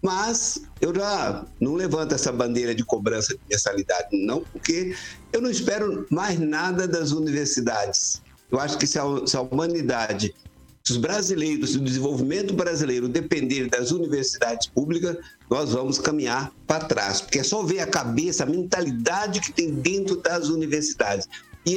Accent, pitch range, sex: Brazilian, 130-190 Hz, male